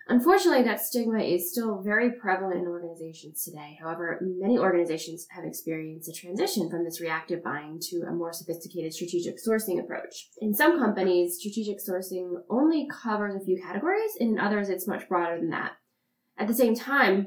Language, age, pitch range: English, 10-29, 175-230 Hz